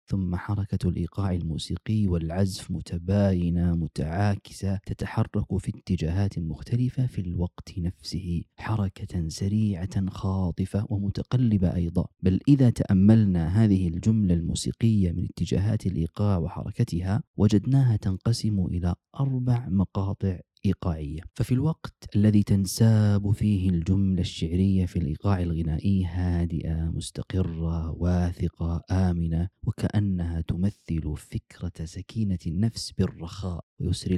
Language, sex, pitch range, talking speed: Arabic, male, 90-105 Hz, 100 wpm